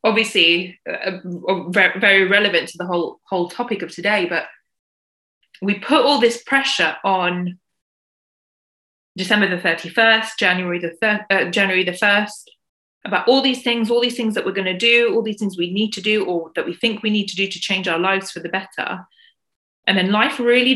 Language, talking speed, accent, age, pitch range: English, 190 wpm, British, 20-39, 190-225 Hz